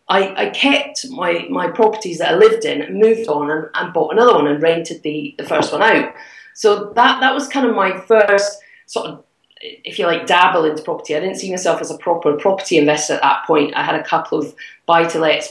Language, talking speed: English, 225 wpm